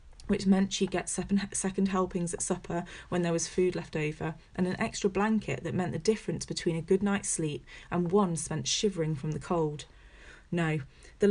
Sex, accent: female, British